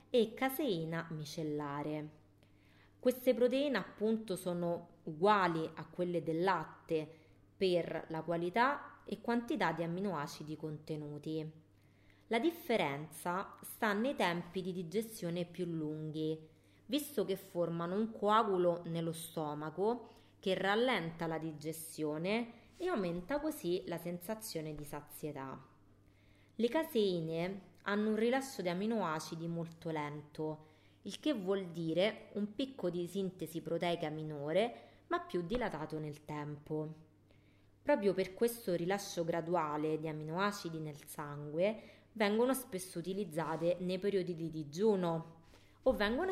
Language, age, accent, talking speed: Italian, 30-49, native, 115 wpm